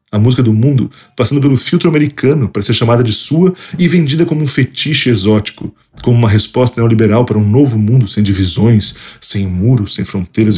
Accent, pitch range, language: Brazilian, 105-145 Hz, Portuguese